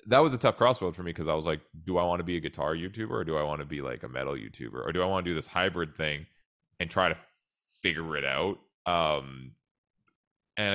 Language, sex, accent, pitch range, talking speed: English, male, American, 75-90 Hz, 255 wpm